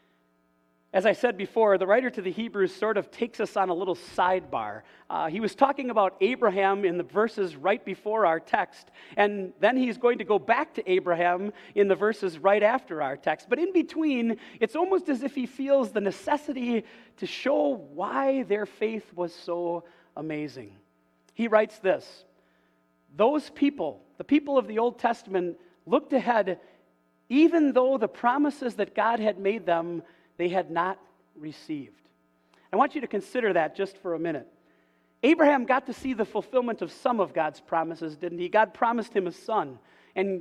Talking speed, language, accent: 180 wpm, English, American